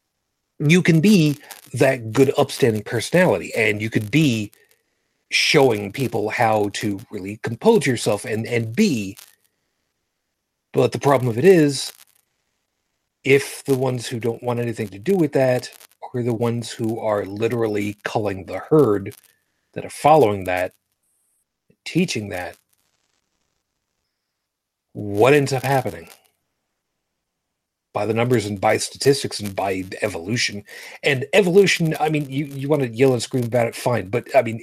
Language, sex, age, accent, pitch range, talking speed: English, male, 40-59, American, 105-140 Hz, 145 wpm